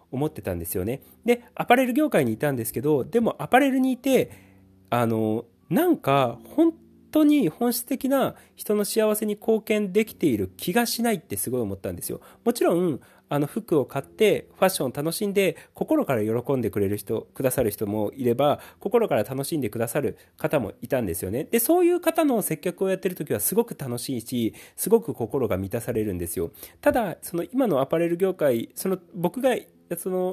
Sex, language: male, Japanese